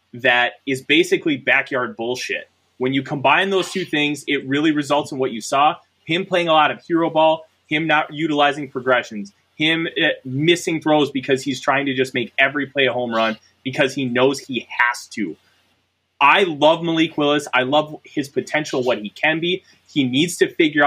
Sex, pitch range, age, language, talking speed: male, 125-160 Hz, 20-39, English, 190 wpm